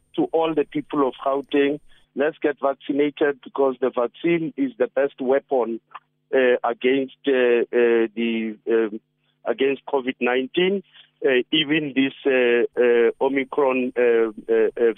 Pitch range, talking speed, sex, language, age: 120-145 Hz, 130 wpm, male, English, 50-69